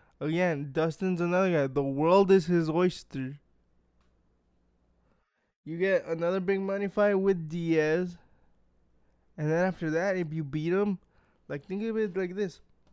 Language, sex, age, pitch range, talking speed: English, male, 20-39, 140-180 Hz, 145 wpm